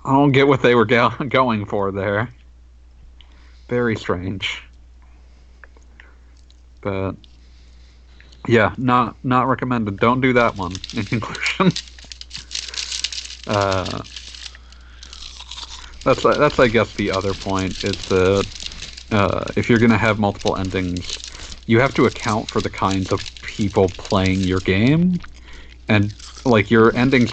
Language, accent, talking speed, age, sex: English, American, 125 wpm, 50-69, male